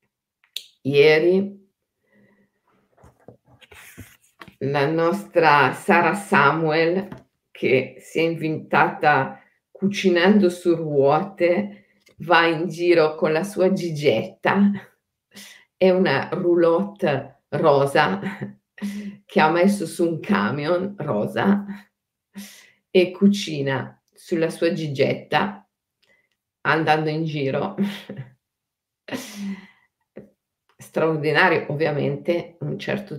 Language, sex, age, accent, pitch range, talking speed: Italian, female, 50-69, native, 155-195 Hz, 75 wpm